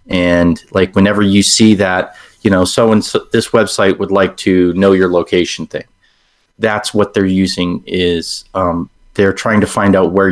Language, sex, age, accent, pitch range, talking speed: English, male, 30-49, American, 90-105 Hz, 180 wpm